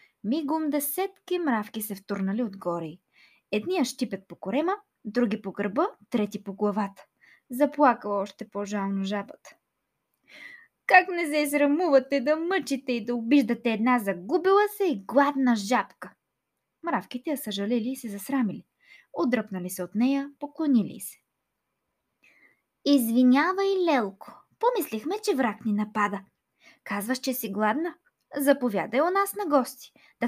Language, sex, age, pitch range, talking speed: Bulgarian, female, 20-39, 215-310 Hz, 130 wpm